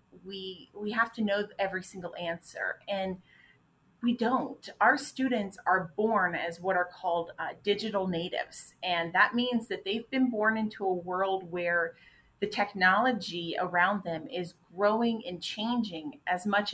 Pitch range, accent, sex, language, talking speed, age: 175-210 Hz, American, female, English, 155 wpm, 30-49